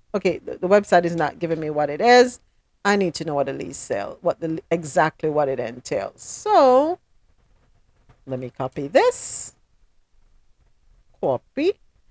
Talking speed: 155 wpm